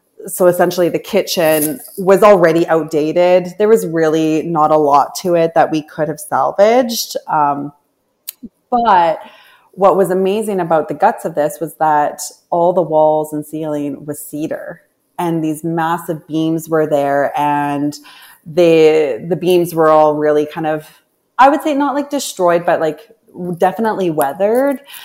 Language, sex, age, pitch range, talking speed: English, female, 20-39, 150-180 Hz, 155 wpm